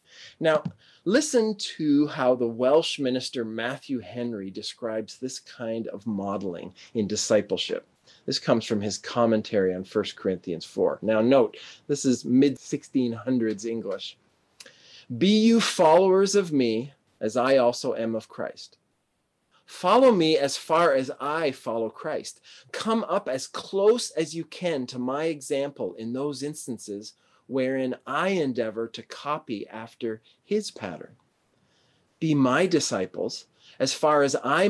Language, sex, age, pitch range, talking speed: English, male, 30-49, 115-175 Hz, 135 wpm